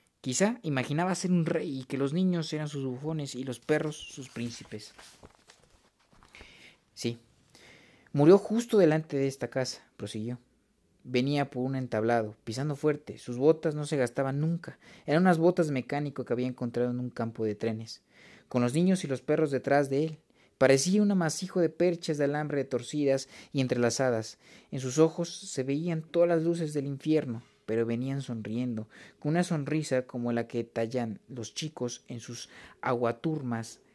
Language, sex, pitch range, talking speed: Spanish, male, 120-155 Hz, 170 wpm